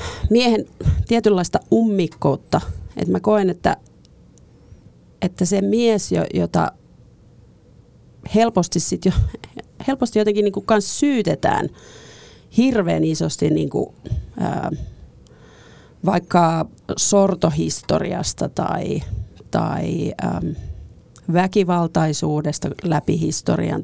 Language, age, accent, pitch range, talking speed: Finnish, 40-59, native, 155-200 Hz, 80 wpm